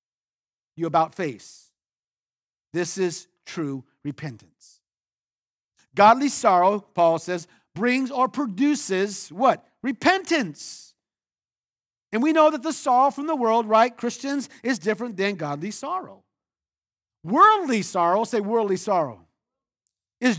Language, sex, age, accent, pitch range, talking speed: English, male, 50-69, American, 170-255 Hz, 110 wpm